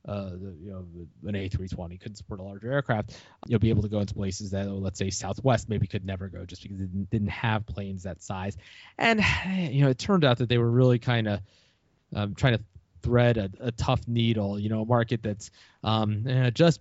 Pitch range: 100-125 Hz